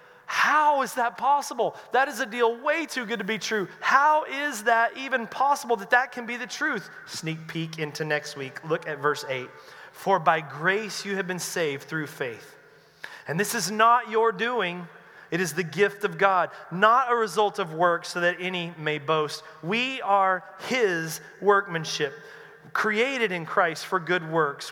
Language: English